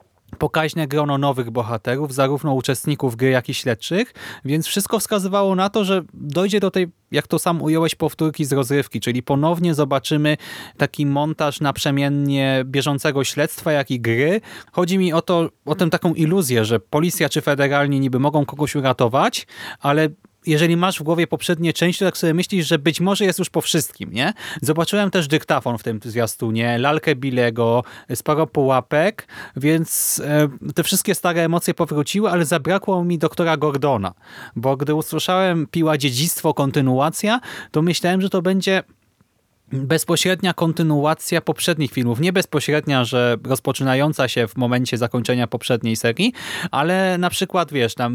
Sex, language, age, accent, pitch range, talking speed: male, Polish, 30-49, native, 125-170 Hz, 155 wpm